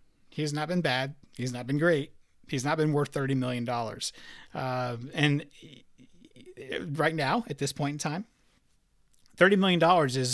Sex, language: male, English